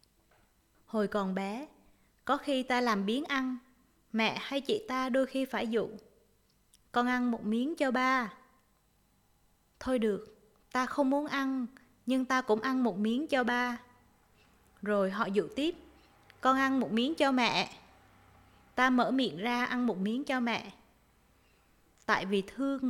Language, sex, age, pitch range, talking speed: Vietnamese, female, 20-39, 220-265 Hz, 155 wpm